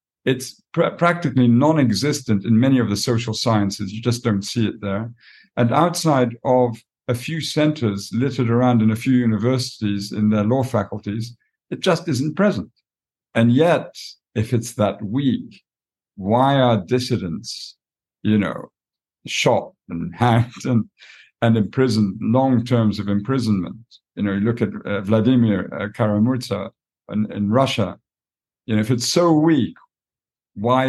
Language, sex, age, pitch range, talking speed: English, male, 50-69, 105-125 Hz, 145 wpm